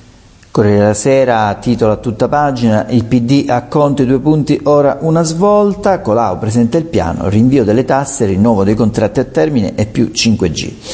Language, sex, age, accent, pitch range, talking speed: Italian, male, 50-69, native, 95-125 Hz, 175 wpm